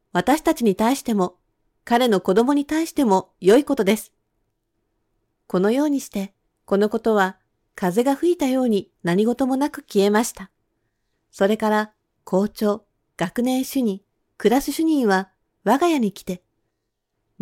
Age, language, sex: 40-59, Japanese, female